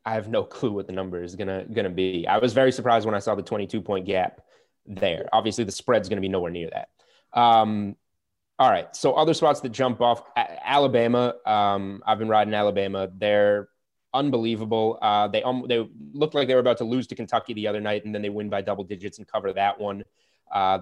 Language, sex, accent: English, male, American